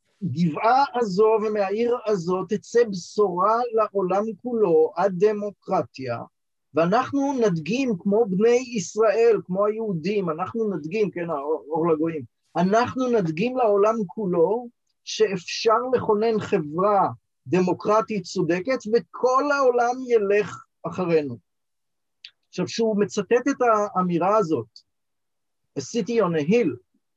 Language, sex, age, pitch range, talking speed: Hebrew, male, 50-69, 170-225 Hz, 95 wpm